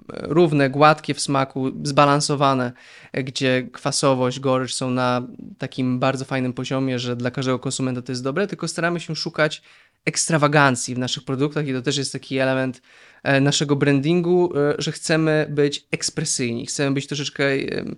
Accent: native